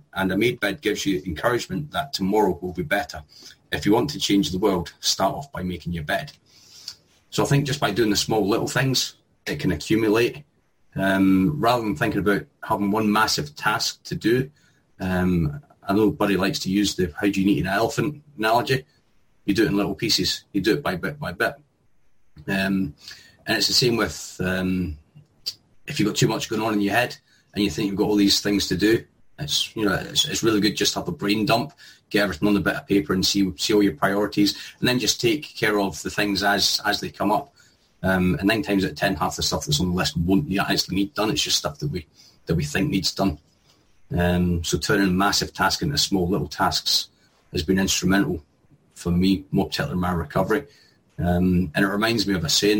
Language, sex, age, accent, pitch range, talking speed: English, male, 30-49, British, 95-110 Hz, 225 wpm